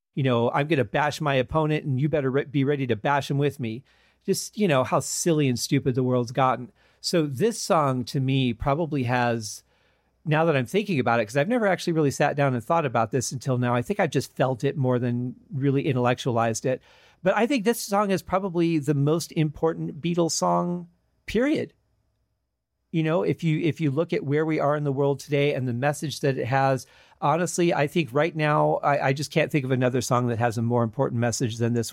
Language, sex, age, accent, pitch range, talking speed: English, male, 40-59, American, 130-175 Hz, 225 wpm